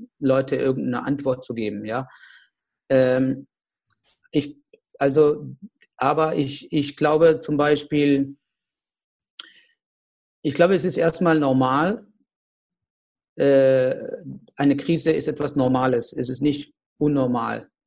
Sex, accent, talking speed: male, German, 105 wpm